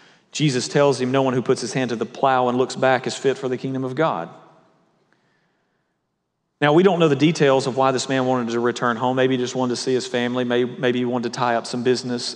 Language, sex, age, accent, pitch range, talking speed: English, male, 40-59, American, 125-160 Hz, 250 wpm